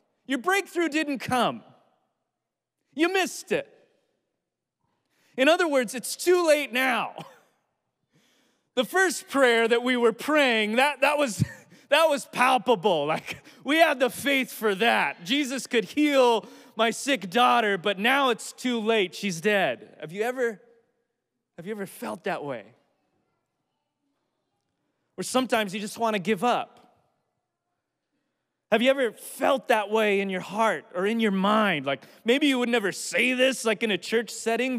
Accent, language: American, English